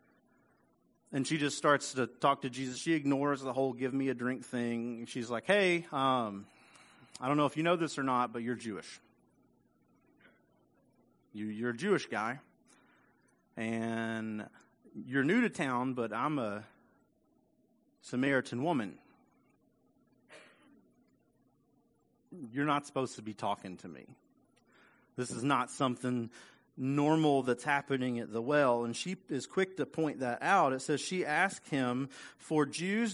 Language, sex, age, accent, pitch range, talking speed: English, male, 30-49, American, 115-145 Hz, 145 wpm